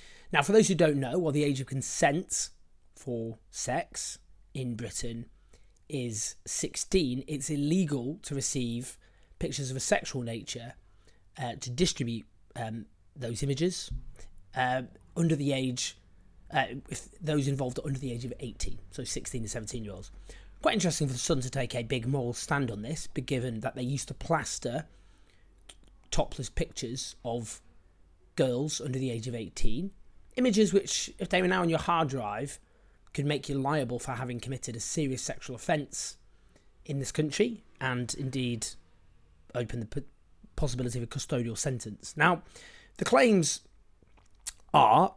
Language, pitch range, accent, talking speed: English, 115-145 Hz, British, 155 wpm